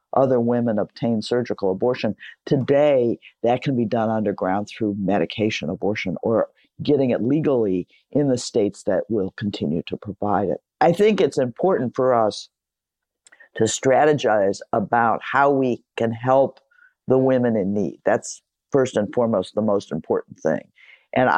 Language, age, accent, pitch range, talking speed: English, 50-69, American, 110-135 Hz, 150 wpm